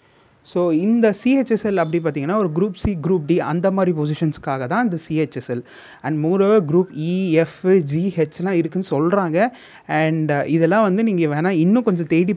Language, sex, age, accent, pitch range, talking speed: Tamil, male, 30-49, native, 155-205 Hz, 150 wpm